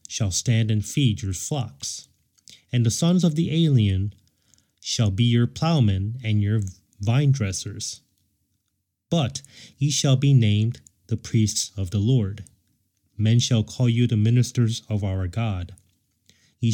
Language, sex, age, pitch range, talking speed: English, male, 30-49, 100-125 Hz, 145 wpm